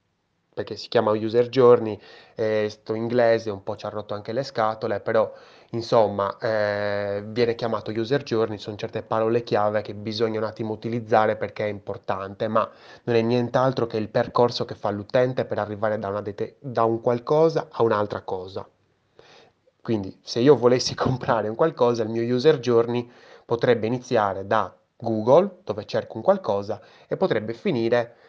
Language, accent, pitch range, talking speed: Italian, native, 105-125 Hz, 160 wpm